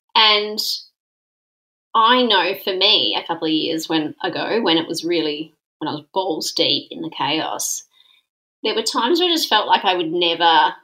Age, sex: 30-49, female